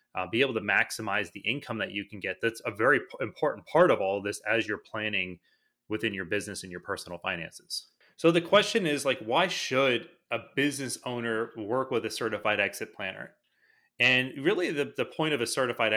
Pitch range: 110-140 Hz